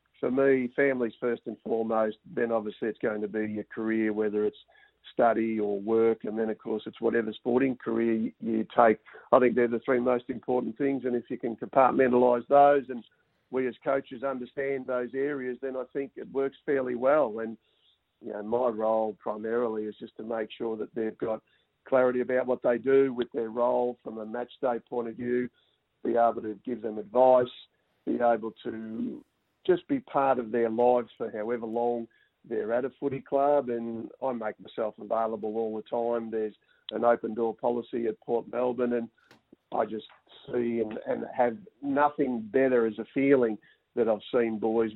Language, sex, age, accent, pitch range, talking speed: English, male, 50-69, Australian, 110-125 Hz, 185 wpm